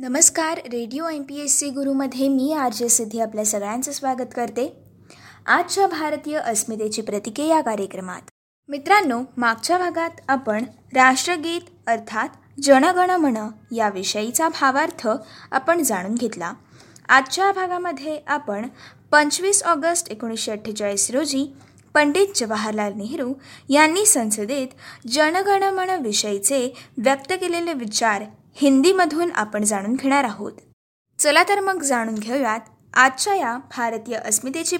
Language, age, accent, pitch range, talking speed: Marathi, 20-39, native, 230-325 Hz, 105 wpm